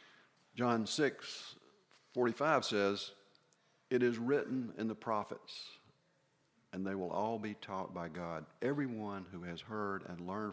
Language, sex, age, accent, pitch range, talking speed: English, male, 50-69, American, 90-110 Hz, 130 wpm